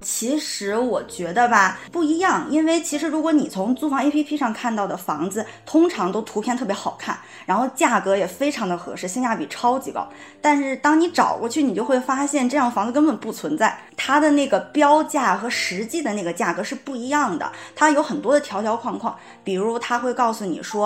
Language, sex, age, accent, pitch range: Chinese, female, 20-39, native, 210-290 Hz